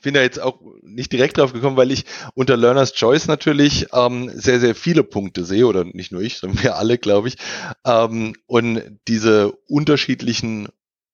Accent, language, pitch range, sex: German, English, 105-130 Hz, male